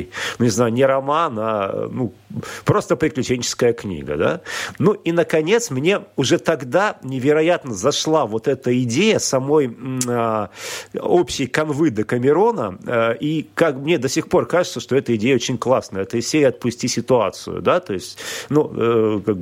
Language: Russian